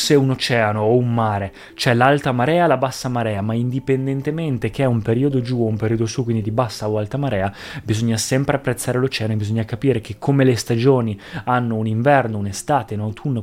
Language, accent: Italian, native